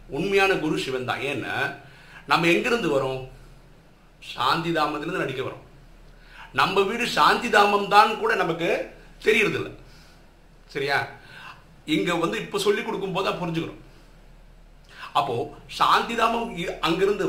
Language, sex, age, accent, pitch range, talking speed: Tamil, male, 50-69, native, 135-195 Hz, 75 wpm